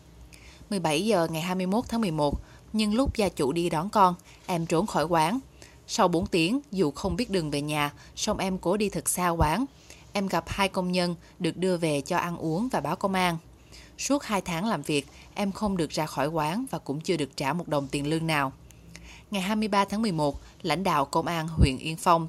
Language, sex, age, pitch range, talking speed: Vietnamese, female, 20-39, 150-195 Hz, 215 wpm